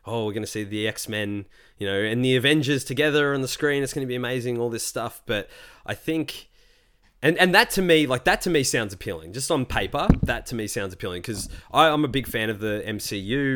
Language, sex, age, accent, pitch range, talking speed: English, male, 20-39, Australian, 95-120 Hz, 240 wpm